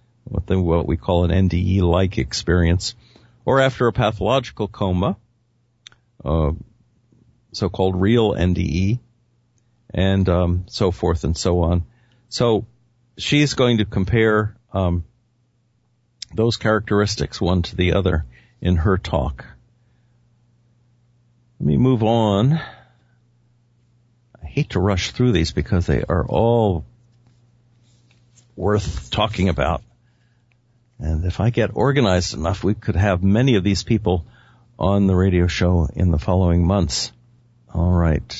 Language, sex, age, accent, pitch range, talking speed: English, male, 50-69, American, 90-120 Hz, 120 wpm